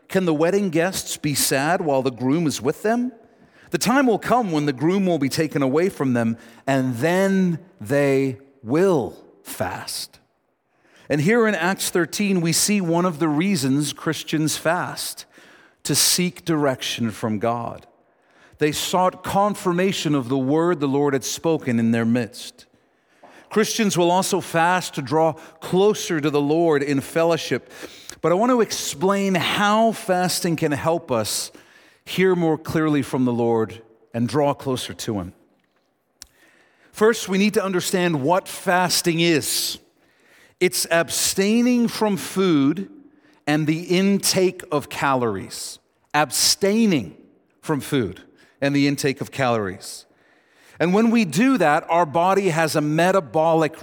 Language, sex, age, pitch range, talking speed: English, male, 50-69, 140-190 Hz, 145 wpm